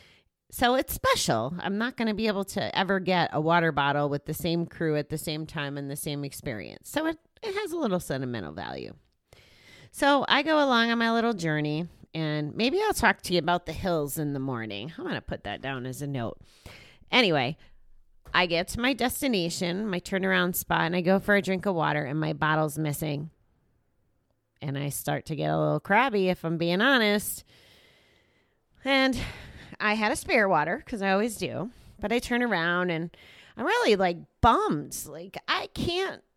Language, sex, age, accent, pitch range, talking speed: English, female, 30-49, American, 155-230 Hz, 195 wpm